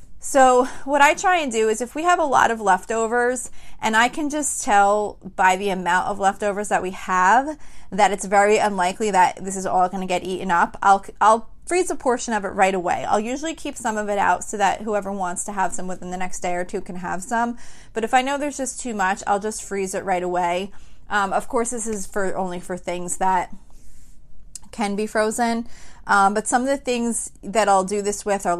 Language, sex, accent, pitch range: English, female, American, 190-230 Hz